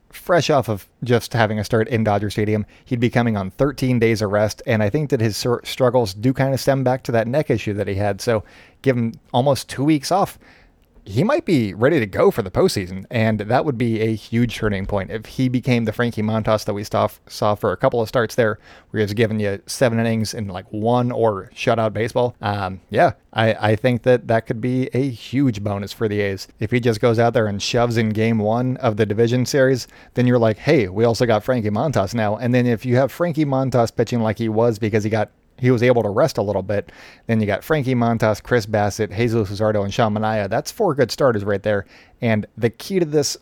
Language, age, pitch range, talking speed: English, 30-49, 110-125 Hz, 235 wpm